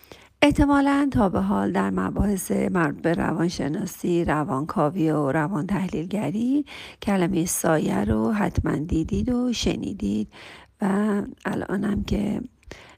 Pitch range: 175-255 Hz